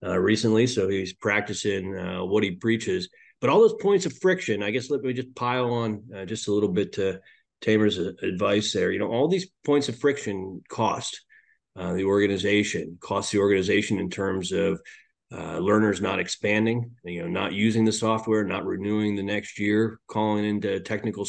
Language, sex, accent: English, male, American